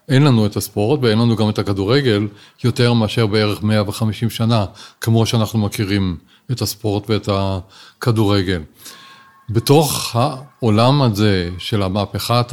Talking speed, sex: 125 wpm, male